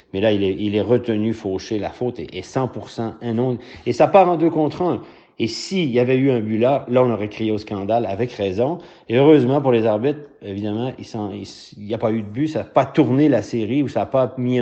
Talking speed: 260 wpm